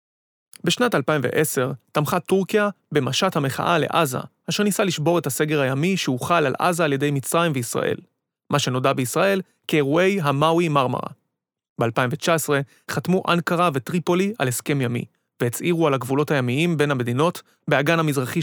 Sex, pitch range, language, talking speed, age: male, 135-175 Hz, Hebrew, 135 wpm, 30-49